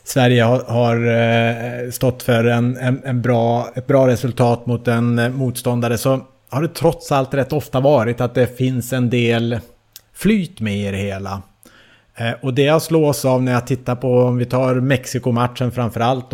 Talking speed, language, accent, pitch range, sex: 155 wpm, English, Norwegian, 120-150 Hz, male